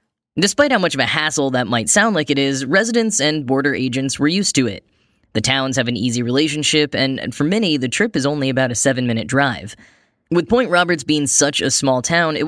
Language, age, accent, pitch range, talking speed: English, 10-29, American, 120-150 Hz, 225 wpm